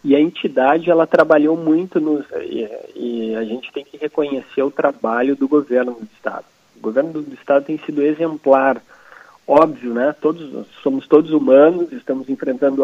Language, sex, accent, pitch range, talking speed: Portuguese, male, Brazilian, 120-155 Hz, 165 wpm